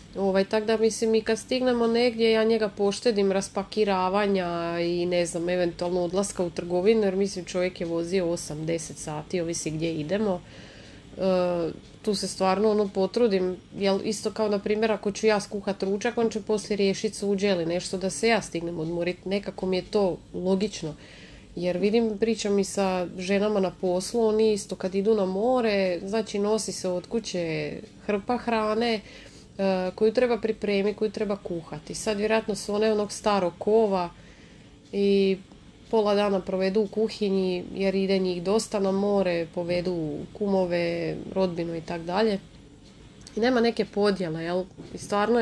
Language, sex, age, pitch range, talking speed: Croatian, female, 30-49, 180-215 Hz, 155 wpm